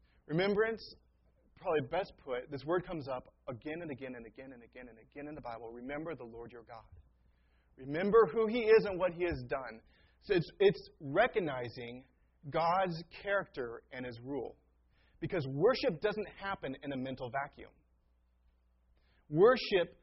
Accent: American